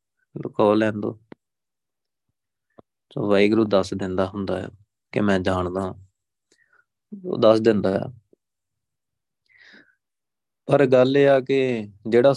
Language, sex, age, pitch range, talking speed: Punjabi, male, 30-49, 100-125 Hz, 100 wpm